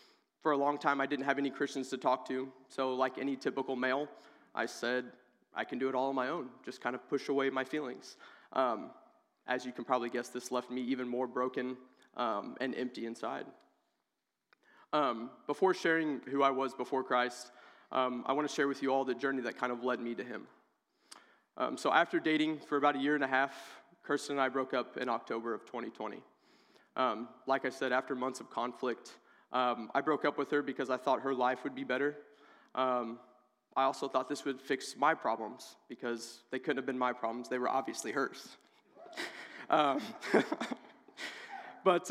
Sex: male